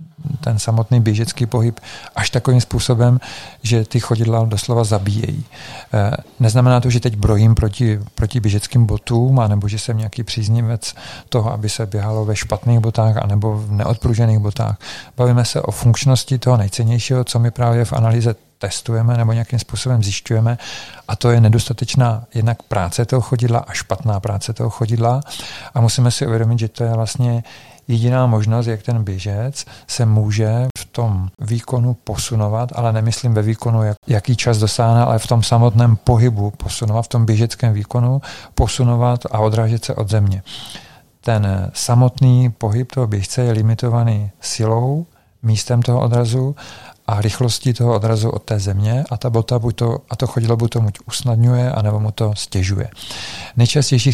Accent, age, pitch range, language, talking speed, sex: native, 40-59, 110-125 Hz, Czech, 155 wpm, male